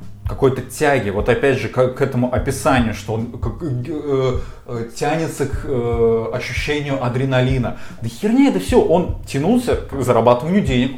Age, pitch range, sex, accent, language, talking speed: 20-39, 105-130 Hz, male, native, Russian, 150 wpm